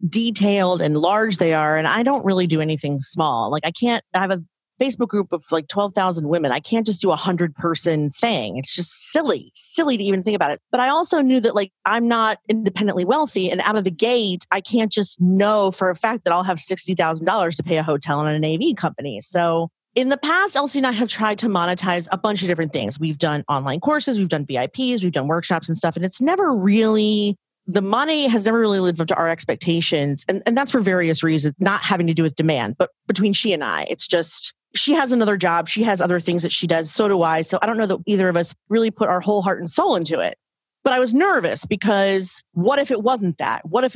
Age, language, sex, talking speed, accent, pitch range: 30-49, English, female, 245 wpm, American, 170-220 Hz